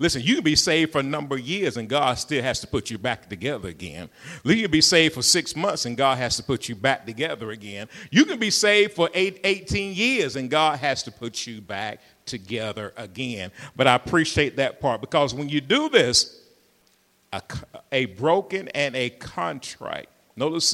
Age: 50-69